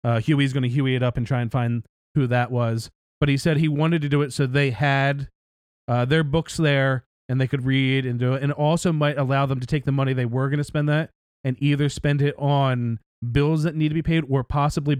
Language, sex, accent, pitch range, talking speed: English, male, American, 125-145 Hz, 260 wpm